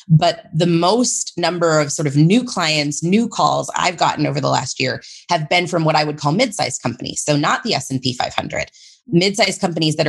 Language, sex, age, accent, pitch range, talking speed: English, female, 30-49, American, 145-175 Hz, 220 wpm